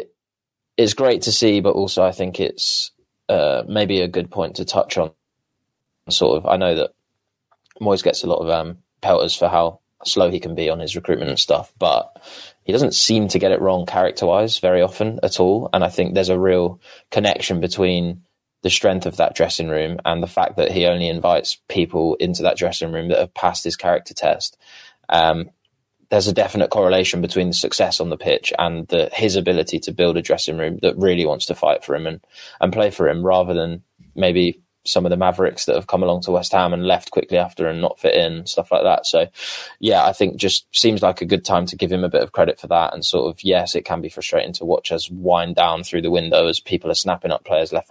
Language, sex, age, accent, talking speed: English, male, 20-39, British, 230 wpm